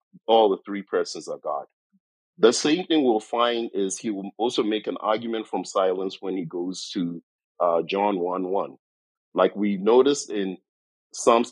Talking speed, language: 170 wpm, English